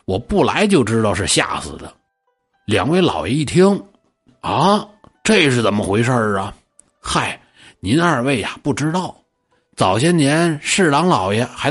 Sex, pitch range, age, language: male, 130-200 Hz, 50-69, Chinese